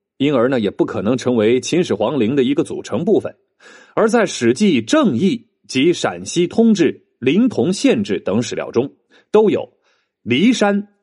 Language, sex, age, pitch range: Chinese, male, 30-49, 170-240 Hz